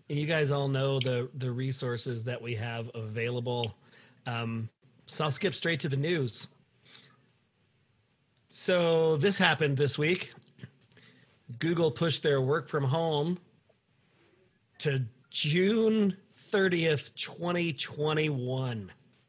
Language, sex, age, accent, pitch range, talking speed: English, male, 40-59, American, 130-150 Hz, 105 wpm